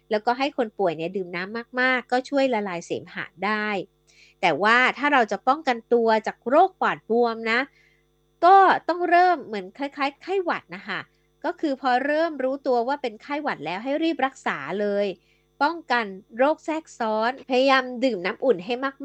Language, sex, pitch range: Thai, female, 205-270 Hz